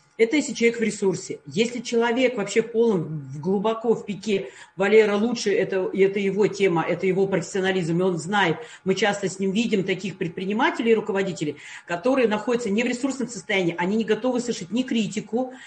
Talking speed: 170 wpm